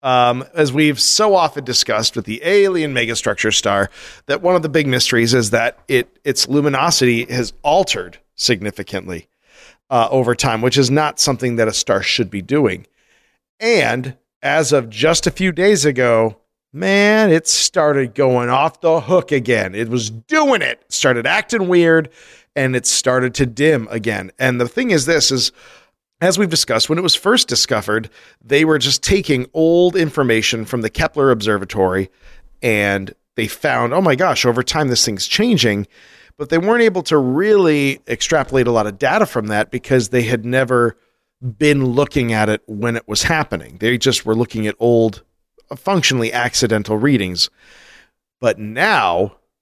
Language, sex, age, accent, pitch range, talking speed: English, male, 40-59, American, 115-150 Hz, 170 wpm